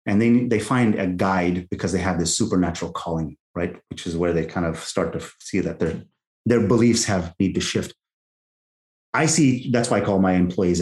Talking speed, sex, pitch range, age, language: 210 wpm, male, 90-115 Hz, 30-49, English